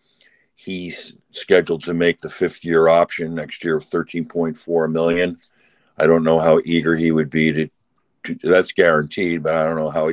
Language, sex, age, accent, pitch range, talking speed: English, male, 50-69, American, 80-85 Hz, 180 wpm